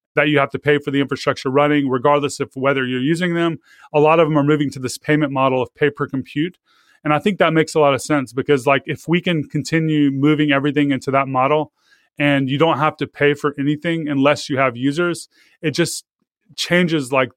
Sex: male